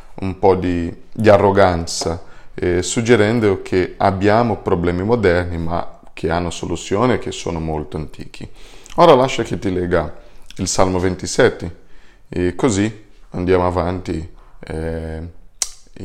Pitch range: 90-110 Hz